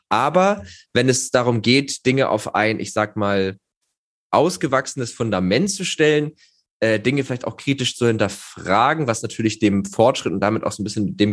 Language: German